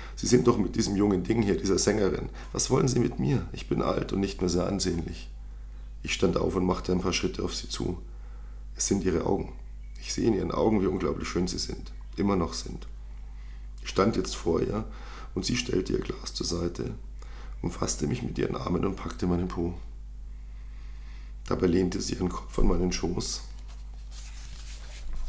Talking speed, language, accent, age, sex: 190 wpm, German, German, 50-69, male